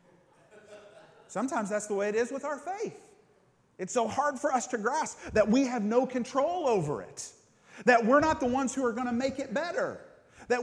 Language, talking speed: English, 205 wpm